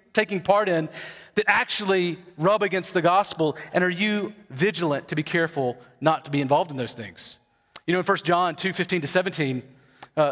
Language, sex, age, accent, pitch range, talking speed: English, male, 40-59, American, 155-195 Hz, 190 wpm